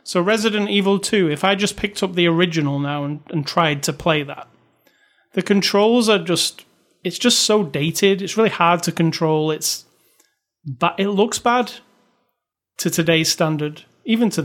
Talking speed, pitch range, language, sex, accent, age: 170 wpm, 160-205 Hz, English, male, British, 30-49